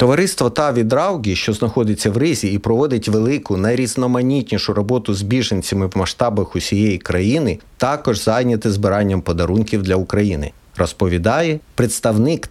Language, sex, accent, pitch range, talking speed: Ukrainian, male, native, 105-135 Hz, 125 wpm